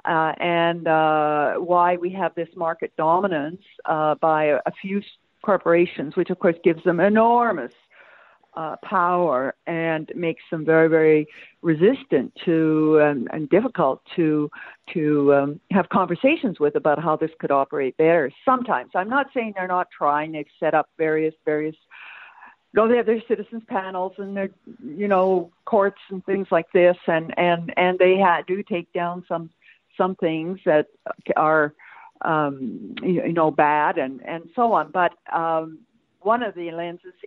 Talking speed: 160 wpm